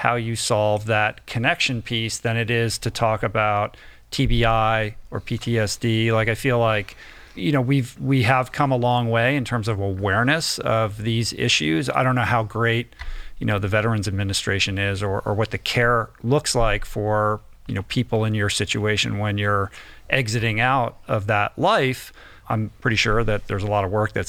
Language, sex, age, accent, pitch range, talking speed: English, male, 40-59, American, 105-125 Hz, 190 wpm